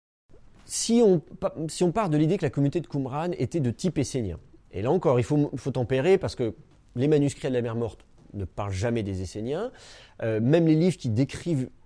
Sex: male